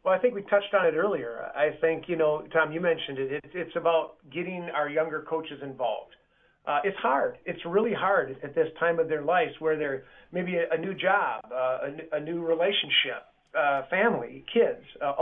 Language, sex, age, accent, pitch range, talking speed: English, male, 40-59, American, 155-195 Hz, 205 wpm